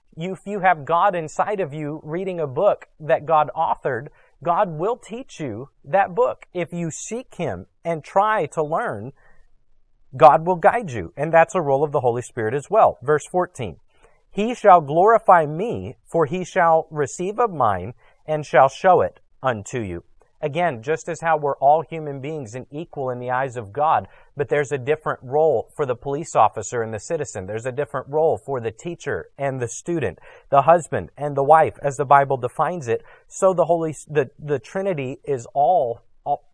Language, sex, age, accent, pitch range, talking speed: English, male, 40-59, American, 135-170 Hz, 190 wpm